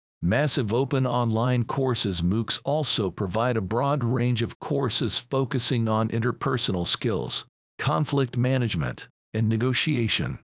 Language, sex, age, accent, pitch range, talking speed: English, male, 50-69, American, 105-130 Hz, 115 wpm